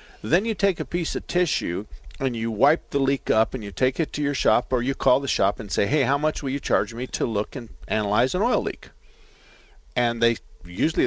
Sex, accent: male, American